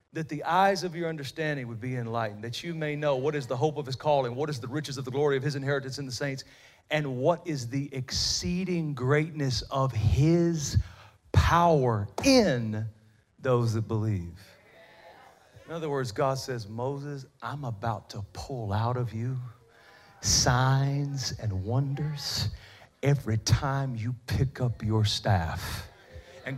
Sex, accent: male, American